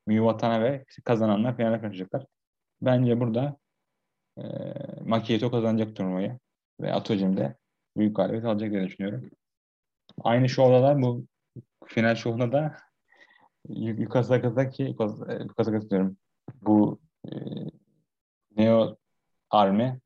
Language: Turkish